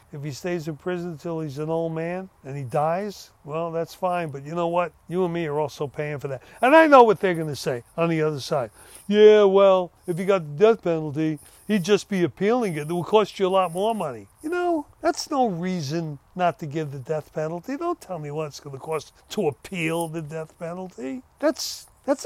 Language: English